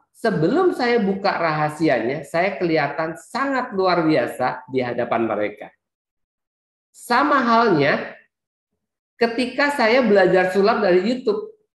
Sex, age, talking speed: male, 50-69, 100 wpm